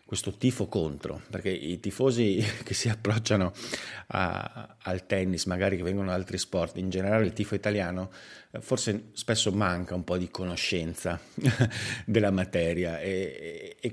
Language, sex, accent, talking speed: Italian, male, native, 145 wpm